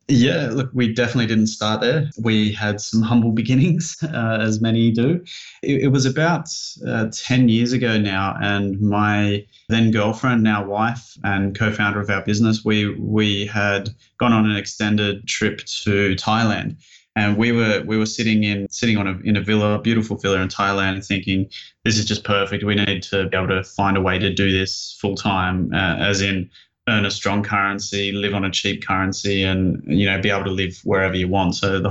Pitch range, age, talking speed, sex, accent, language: 100-110 Hz, 20-39, 205 wpm, male, Australian, English